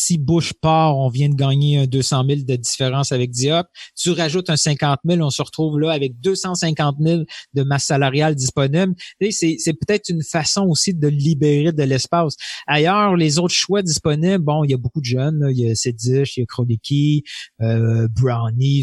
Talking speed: 200 wpm